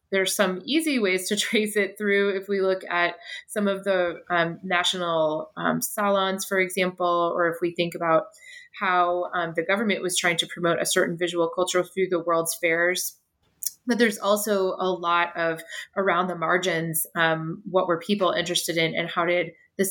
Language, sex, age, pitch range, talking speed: English, female, 20-39, 170-205 Hz, 185 wpm